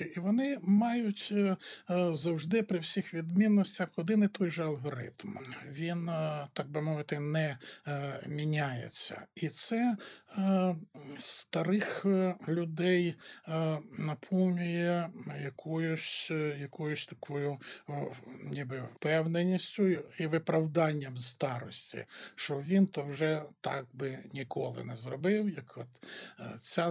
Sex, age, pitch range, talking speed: male, 50-69, 145-180 Hz, 95 wpm